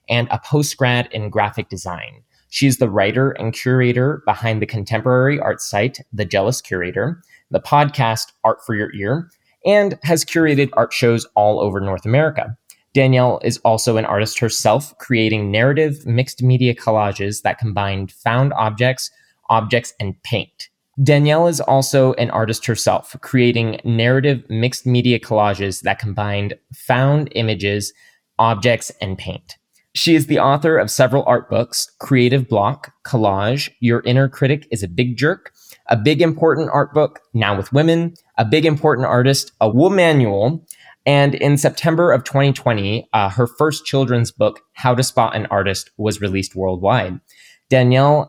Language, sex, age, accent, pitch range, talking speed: English, male, 20-39, American, 110-140 Hz, 155 wpm